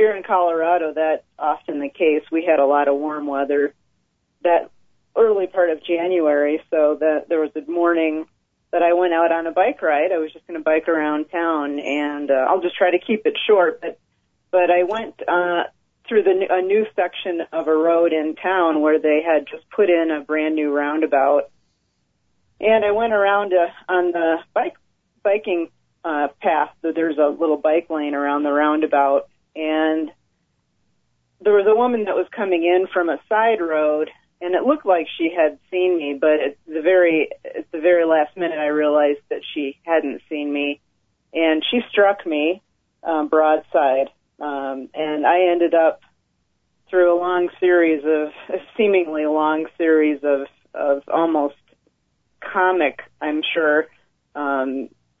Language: English